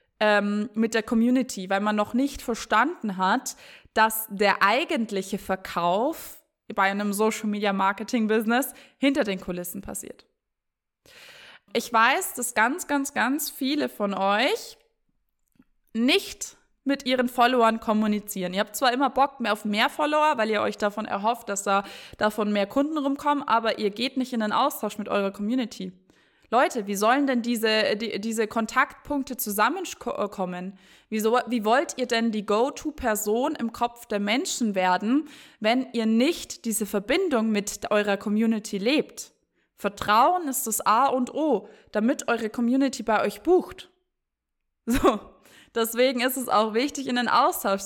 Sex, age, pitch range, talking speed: female, 20-39, 210-275 Hz, 140 wpm